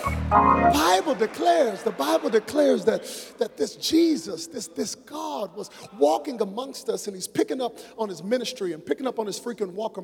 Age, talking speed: 40-59, 180 wpm